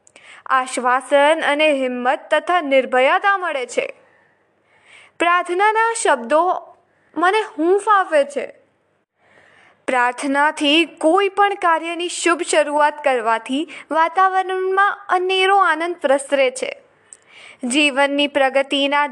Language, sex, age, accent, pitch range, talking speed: Gujarati, female, 20-39, native, 285-375 Hz, 40 wpm